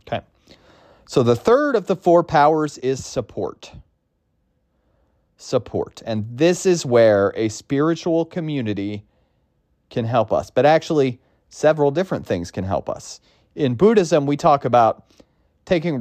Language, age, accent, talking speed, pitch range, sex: English, 30-49, American, 125 wpm, 110-150 Hz, male